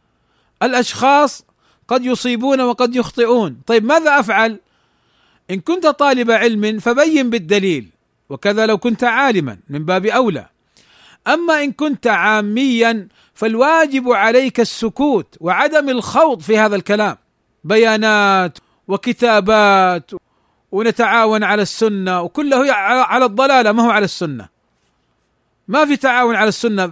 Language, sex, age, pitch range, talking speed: Arabic, male, 40-59, 200-265 Hz, 110 wpm